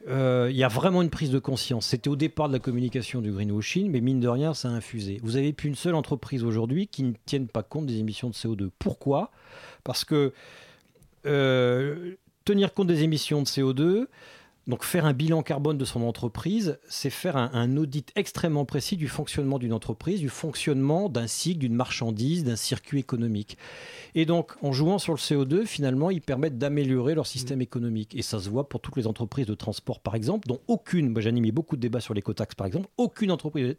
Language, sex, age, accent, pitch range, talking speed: French, male, 40-59, French, 120-160 Hz, 205 wpm